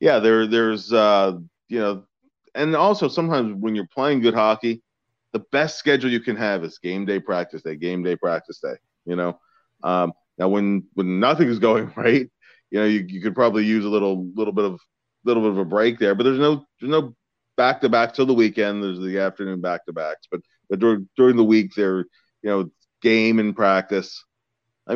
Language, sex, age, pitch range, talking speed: English, male, 30-49, 95-120 Hz, 205 wpm